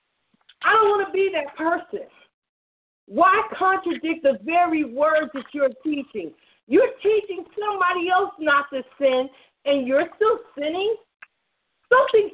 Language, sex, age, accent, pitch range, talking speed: English, female, 40-59, American, 295-385 Hz, 130 wpm